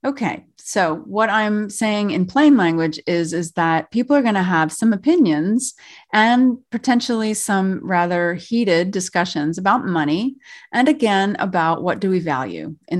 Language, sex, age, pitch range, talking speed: English, female, 30-49, 165-220 Hz, 155 wpm